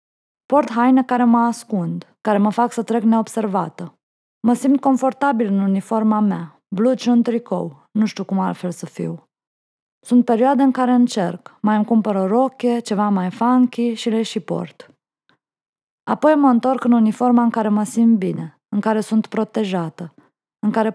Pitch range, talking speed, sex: 210-250 Hz, 170 wpm, female